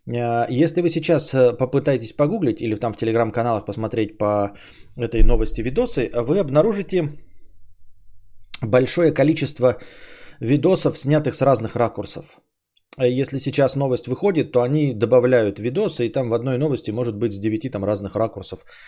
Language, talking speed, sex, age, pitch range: Bulgarian, 135 wpm, male, 20-39, 110-140 Hz